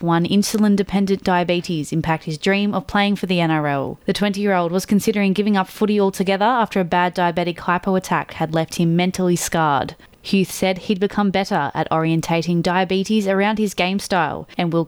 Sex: female